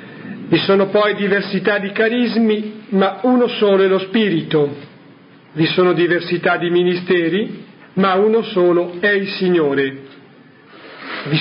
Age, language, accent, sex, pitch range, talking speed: 50-69, Italian, native, male, 165-200 Hz, 125 wpm